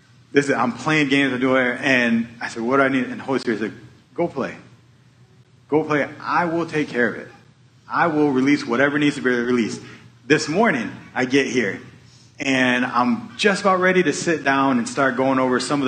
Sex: male